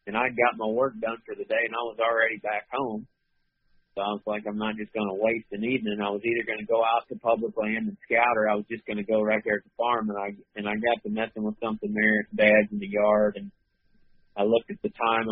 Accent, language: American, English